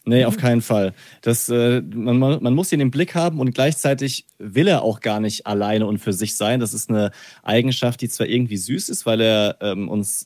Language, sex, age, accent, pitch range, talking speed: German, male, 30-49, German, 105-125 Hz, 205 wpm